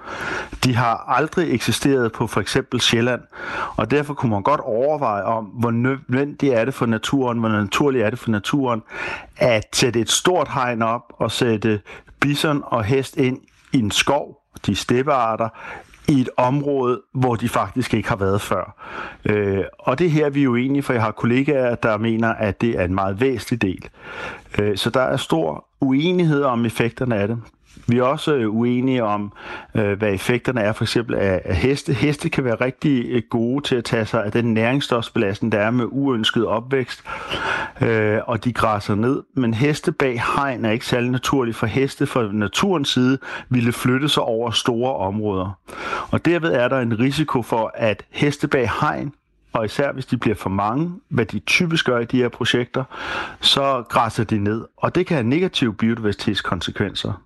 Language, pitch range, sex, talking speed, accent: Danish, 110-135 Hz, male, 180 wpm, native